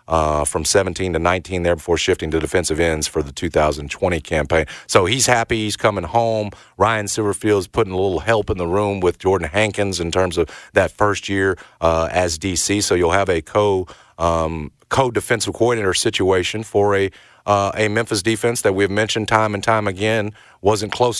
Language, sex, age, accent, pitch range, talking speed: English, male, 40-59, American, 85-105 Hz, 195 wpm